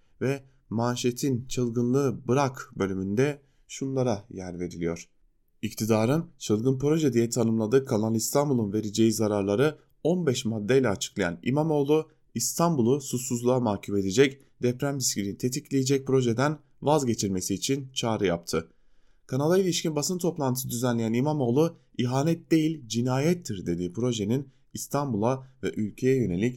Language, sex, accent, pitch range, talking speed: German, male, Turkish, 110-135 Hz, 110 wpm